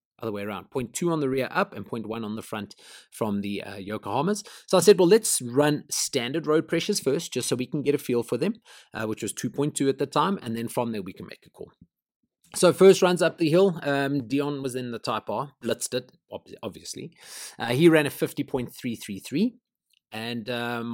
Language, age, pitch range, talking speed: English, 30-49, 120-170 Hz, 220 wpm